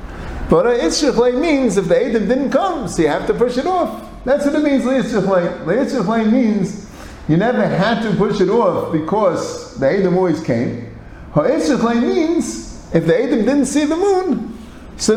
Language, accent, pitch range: English, American, 180-275 Hz